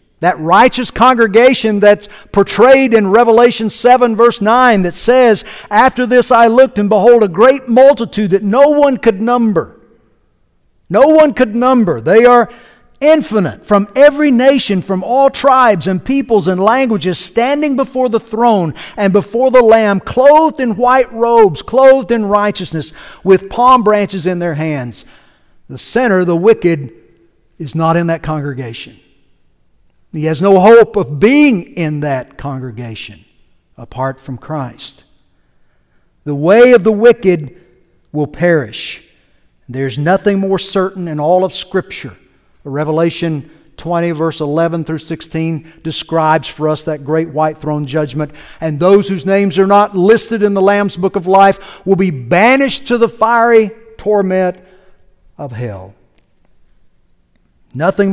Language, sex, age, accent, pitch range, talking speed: English, male, 50-69, American, 160-230 Hz, 140 wpm